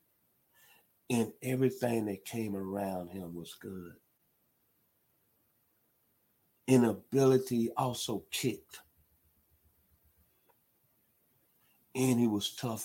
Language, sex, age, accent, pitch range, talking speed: English, male, 50-69, American, 95-120 Hz, 70 wpm